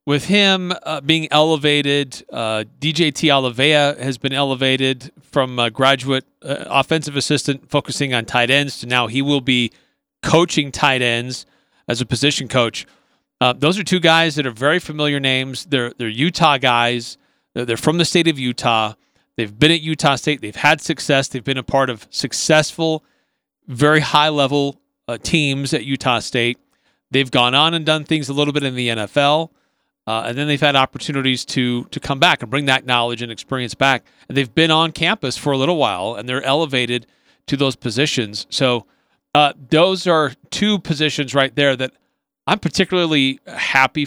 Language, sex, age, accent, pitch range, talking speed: English, male, 40-59, American, 125-155 Hz, 175 wpm